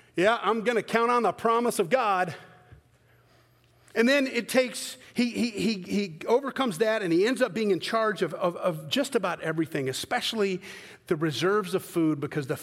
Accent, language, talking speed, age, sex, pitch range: American, English, 190 wpm, 40-59, male, 155-220 Hz